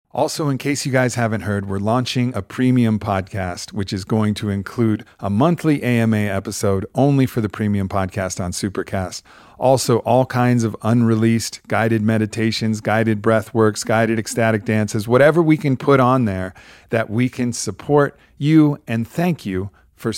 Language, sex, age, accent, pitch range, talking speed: English, male, 40-59, American, 105-125 Hz, 165 wpm